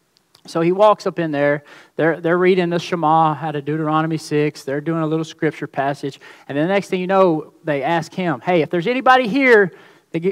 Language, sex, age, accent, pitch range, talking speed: English, male, 40-59, American, 155-195 Hz, 210 wpm